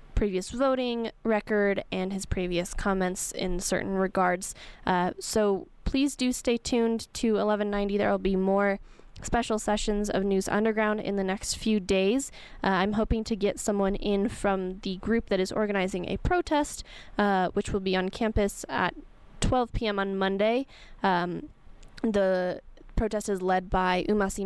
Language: English